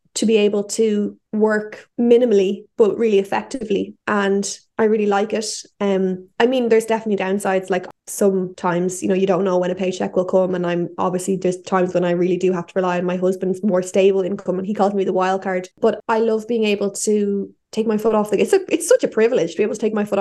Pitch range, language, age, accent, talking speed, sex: 195-220 Hz, English, 20-39, Irish, 240 wpm, female